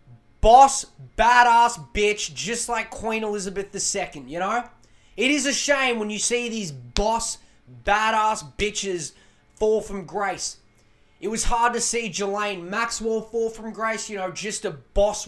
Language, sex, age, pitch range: English, male, 20-39, 180-225 Hz